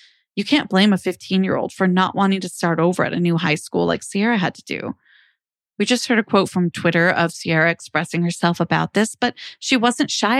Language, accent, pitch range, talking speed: English, American, 170-215 Hz, 220 wpm